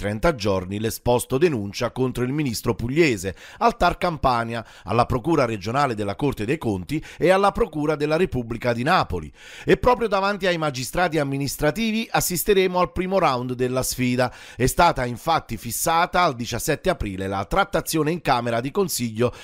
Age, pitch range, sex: 40-59, 120-175 Hz, male